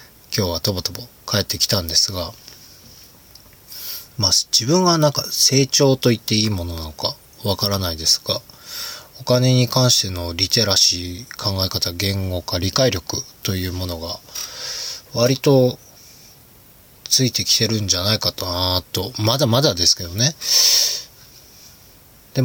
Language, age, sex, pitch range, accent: Japanese, 20-39, male, 90-125 Hz, native